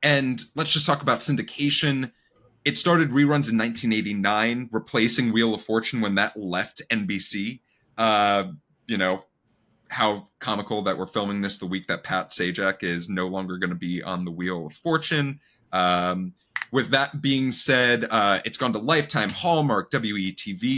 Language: English